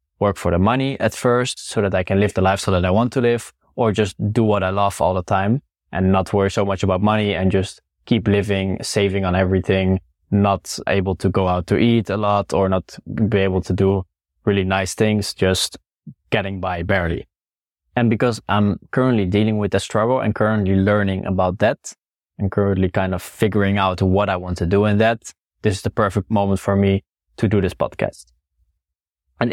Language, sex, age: English, male, 20-39